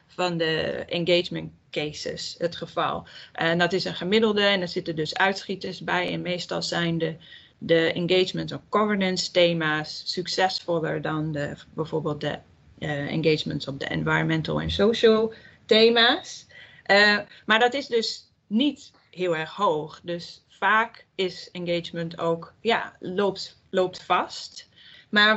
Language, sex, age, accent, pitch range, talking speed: Dutch, female, 20-39, Dutch, 165-190 Hz, 140 wpm